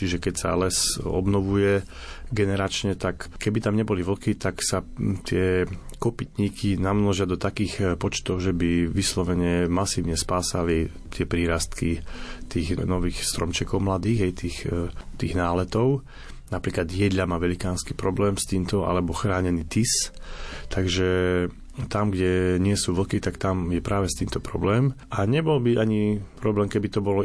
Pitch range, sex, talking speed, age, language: 90-105 Hz, male, 145 wpm, 30-49, Slovak